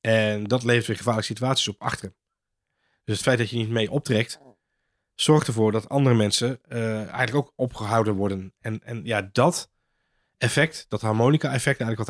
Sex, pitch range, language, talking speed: male, 105-130 Hz, Dutch, 180 wpm